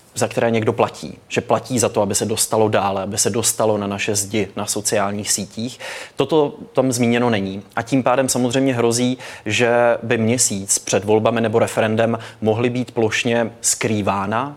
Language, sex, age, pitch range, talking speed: Czech, male, 20-39, 105-120 Hz, 170 wpm